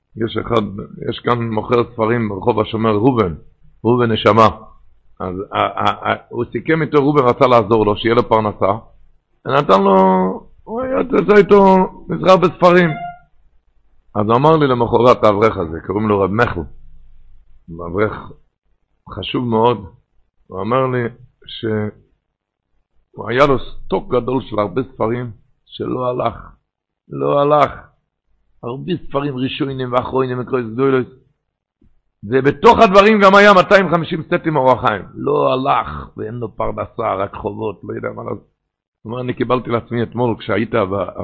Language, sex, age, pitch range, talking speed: Hebrew, male, 60-79, 105-150 Hz, 135 wpm